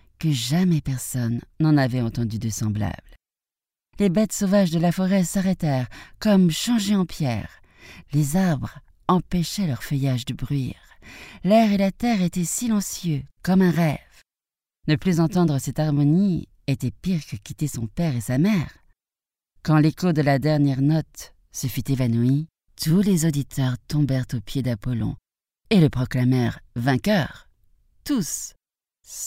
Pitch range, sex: 125-175 Hz, female